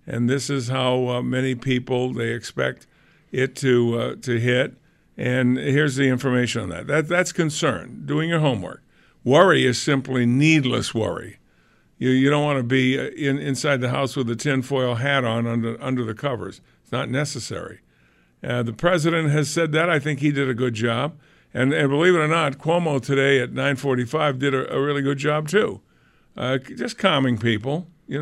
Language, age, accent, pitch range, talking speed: English, 50-69, American, 125-145 Hz, 190 wpm